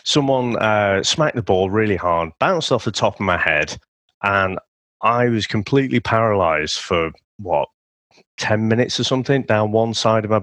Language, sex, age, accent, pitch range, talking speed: English, male, 30-49, British, 95-125 Hz, 175 wpm